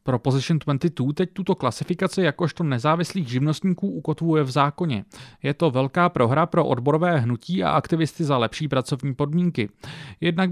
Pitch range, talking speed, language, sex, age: 135-175 Hz, 150 wpm, Czech, male, 30-49